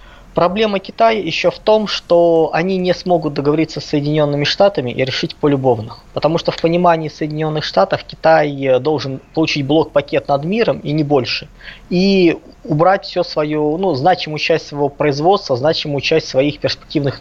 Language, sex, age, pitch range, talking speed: Russian, male, 20-39, 145-175 Hz, 155 wpm